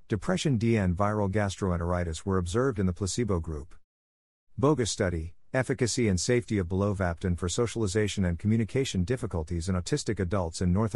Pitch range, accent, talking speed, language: 90-115 Hz, American, 150 wpm, English